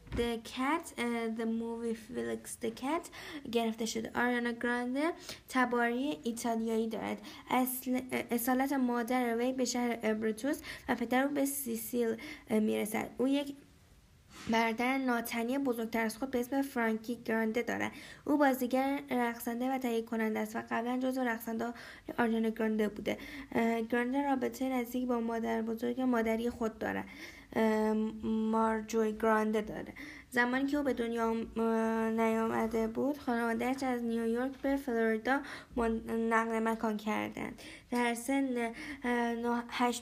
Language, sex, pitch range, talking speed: Persian, female, 225-255 Hz, 120 wpm